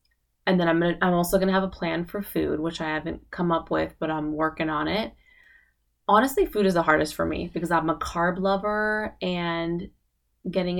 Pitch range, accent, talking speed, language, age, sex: 160-190 Hz, American, 210 wpm, English, 20-39, female